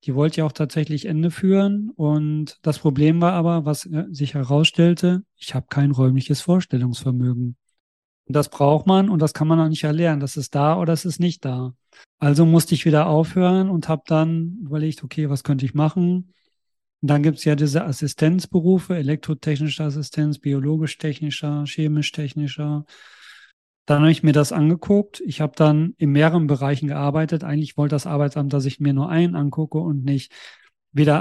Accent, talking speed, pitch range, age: German, 175 wpm, 145-165 Hz, 40-59